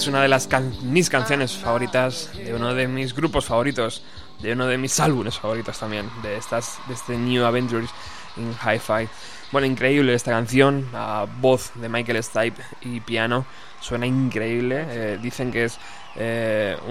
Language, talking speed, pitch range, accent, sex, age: Spanish, 170 wpm, 115-130 Hz, Spanish, male, 20-39